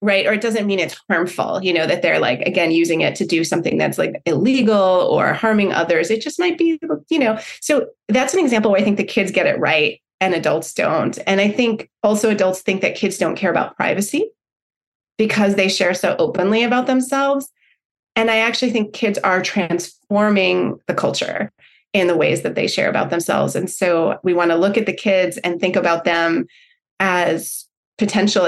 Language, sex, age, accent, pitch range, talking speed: English, female, 30-49, American, 185-255 Hz, 200 wpm